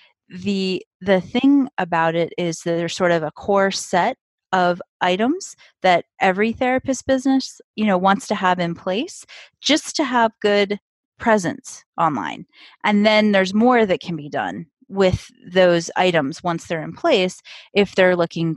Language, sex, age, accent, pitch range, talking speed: English, female, 30-49, American, 165-205 Hz, 160 wpm